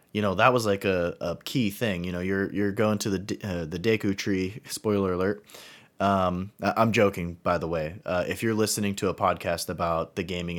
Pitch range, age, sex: 95-110 Hz, 20-39, male